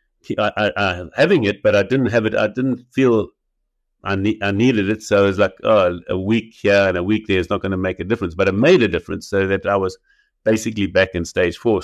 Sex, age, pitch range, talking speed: male, 60-79, 95-115 Hz, 260 wpm